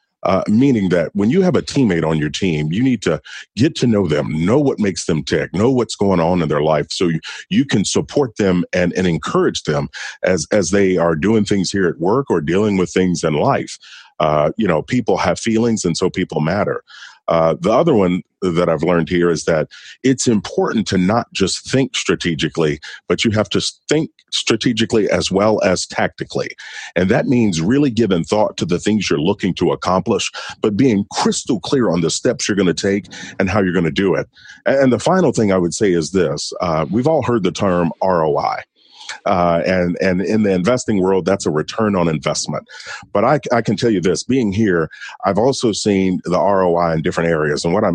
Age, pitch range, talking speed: 40-59, 85-105 Hz, 215 wpm